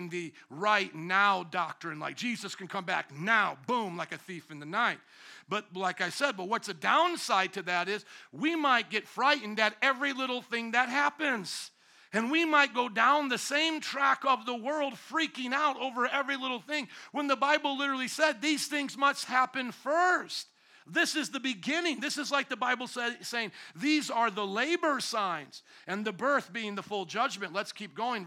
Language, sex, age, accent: English, male, 50-69, American